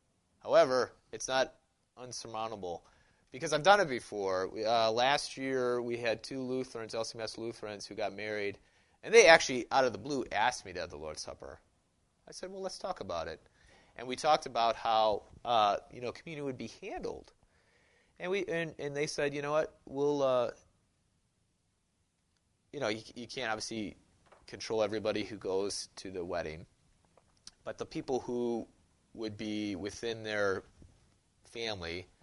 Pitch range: 105-145 Hz